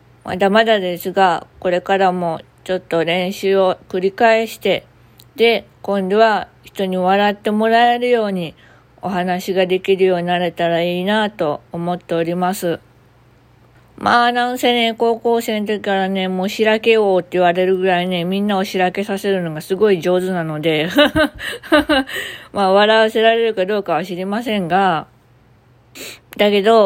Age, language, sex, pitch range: 20-39, Japanese, female, 180-215 Hz